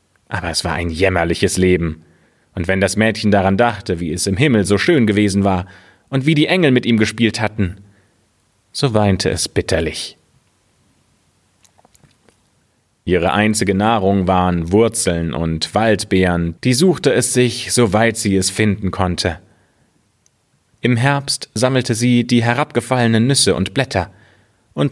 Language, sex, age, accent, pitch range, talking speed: German, male, 30-49, German, 90-115 Hz, 140 wpm